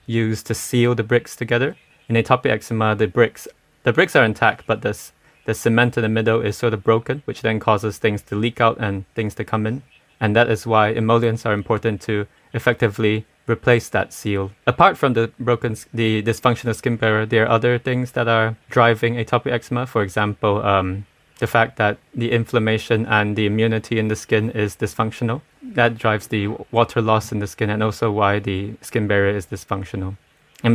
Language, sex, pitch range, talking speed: English, male, 110-120 Hz, 195 wpm